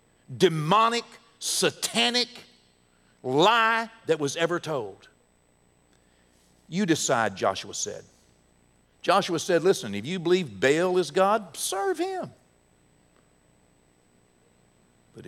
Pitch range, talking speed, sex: 120-175 Hz, 90 wpm, male